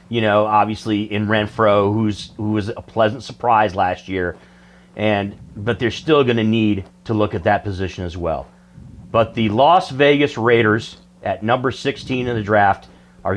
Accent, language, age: American, English, 40-59